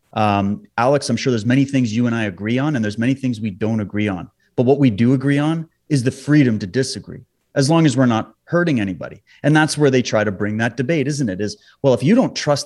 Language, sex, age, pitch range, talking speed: English, male, 30-49, 120-160 Hz, 260 wpm